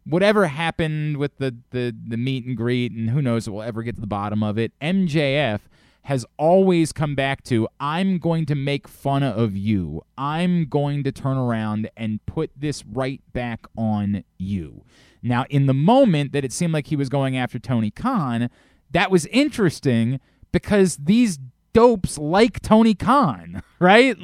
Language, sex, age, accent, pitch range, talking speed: English, male, 30-49, American, 125-190 Hz, 175 wpm